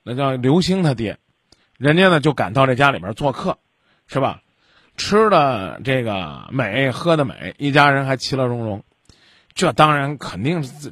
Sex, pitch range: male, 135-180 Hz